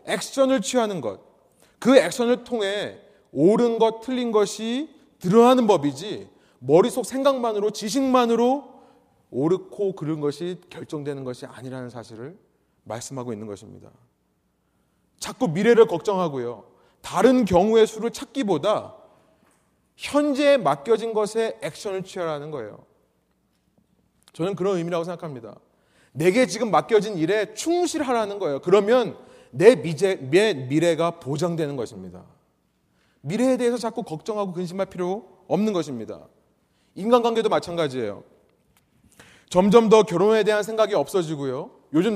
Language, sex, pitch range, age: Korean, male, 155-230 Hz, 30-49